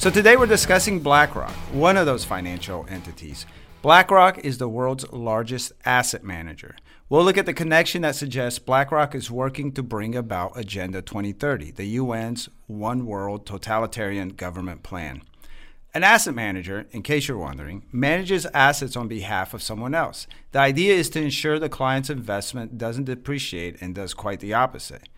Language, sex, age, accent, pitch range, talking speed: English, male, 40-59, American, 110-155 Hz, 160 wpm